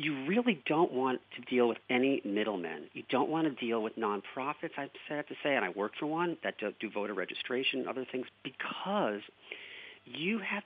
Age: 40-59